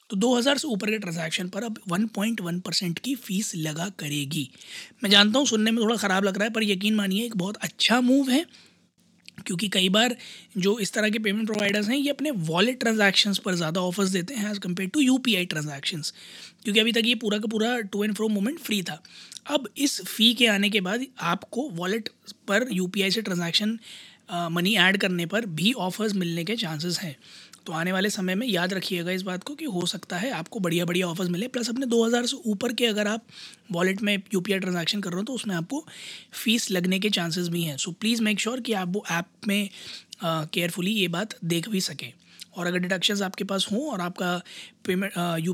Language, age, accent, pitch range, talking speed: Hindi, 20-39, native, 180-220 Hz, 210 wpm